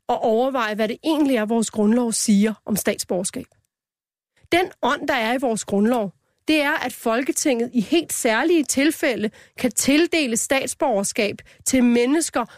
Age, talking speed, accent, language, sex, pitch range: 30-49, 150 wpm, native, Danish, female, 230-295 Hz